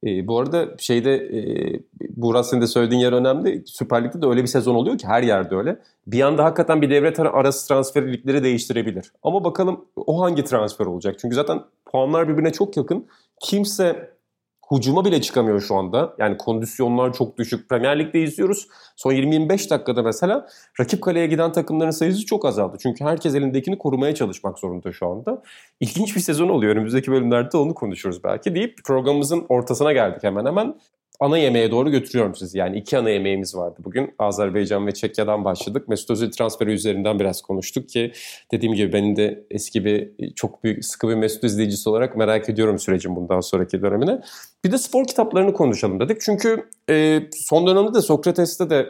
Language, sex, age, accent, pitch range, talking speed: Turkish, male, 30-49, native, 105-145 Hz, 175 wpm